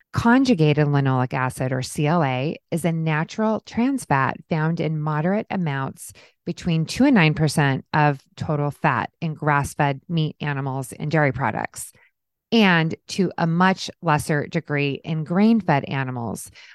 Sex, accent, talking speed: female, American, 140 wpm